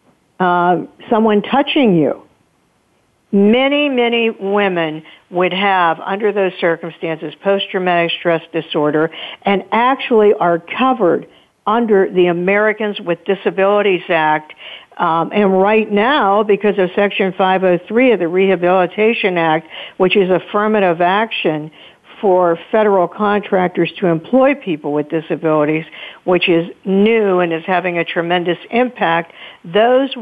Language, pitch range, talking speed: English, 170-210 Hz, 115 wpm